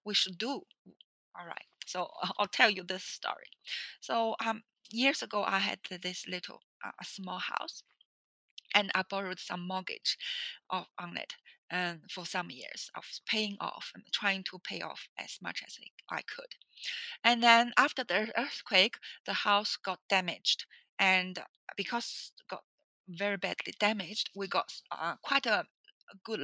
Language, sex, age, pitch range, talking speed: English, female, 30-49, 185-235 Hz, 160 wpm